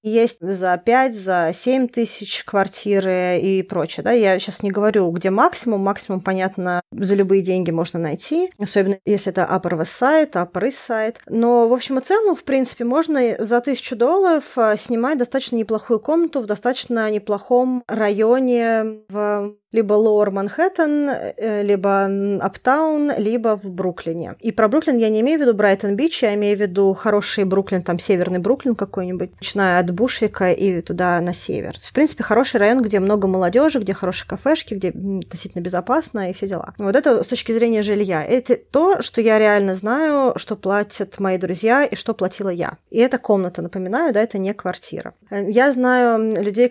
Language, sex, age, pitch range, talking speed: Russian, female, 20-39, 190-245 Hz, 170 wpm